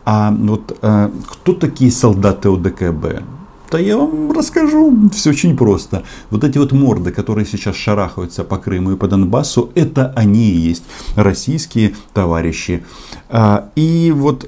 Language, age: Russian, 50-69